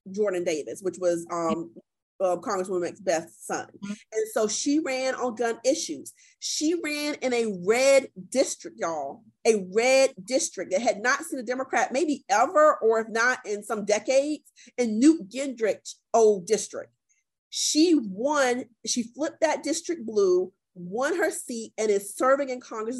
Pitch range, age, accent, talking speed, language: 205-270 Hz, 40-59, American, 160 wpm, English